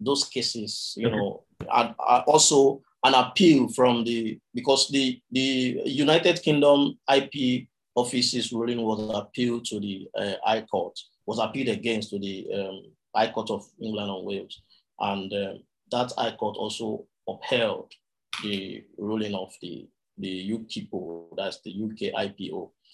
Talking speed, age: 145 wpm, 30-49